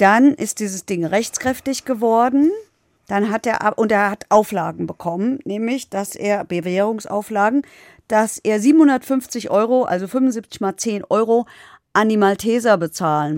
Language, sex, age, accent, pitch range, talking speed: German, female, 50-69, German, 180-230 Hz, 140 wpm